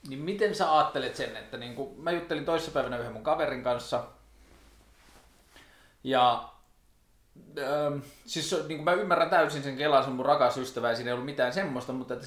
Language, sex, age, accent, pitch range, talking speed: Finnish, male, 30-49, native, 120-160 Hz, 160 wpm